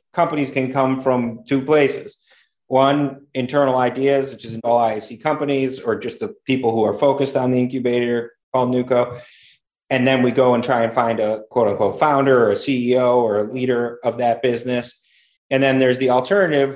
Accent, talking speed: American, 185 wpm